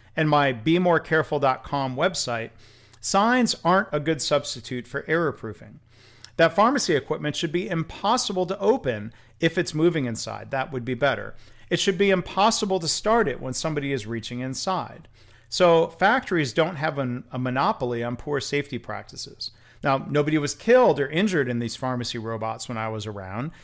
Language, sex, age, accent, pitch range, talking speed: English, male, 40-59, American, 120-160 Hz, 160 wpm